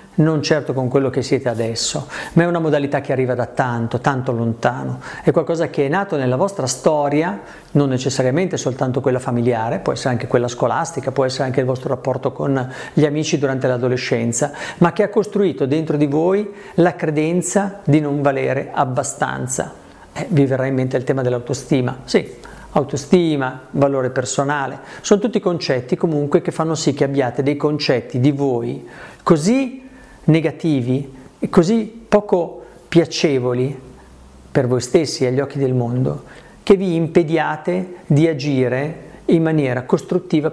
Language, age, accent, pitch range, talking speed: Italian, 50-69, native, 130-170 Hz, 155 wpm